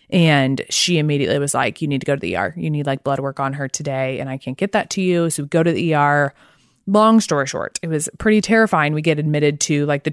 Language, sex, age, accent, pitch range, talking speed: English, female, 20-39, American, 145-175 Hz, 275 wpm